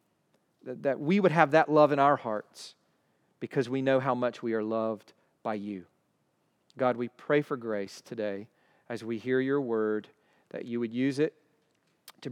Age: 40-59